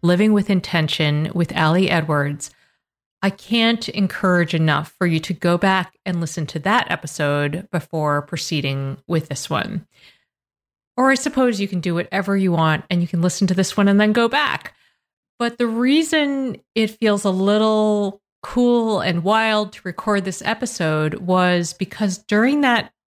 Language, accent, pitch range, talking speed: English, American, 170-225 Hz, 165 wpm